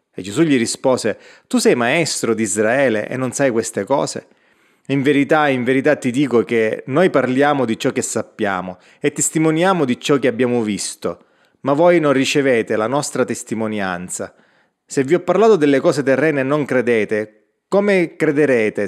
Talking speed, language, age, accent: 170 wpm, Italian, 30-49, native